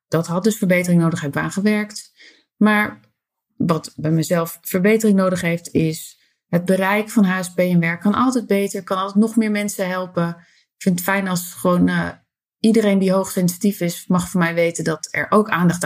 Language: Dutch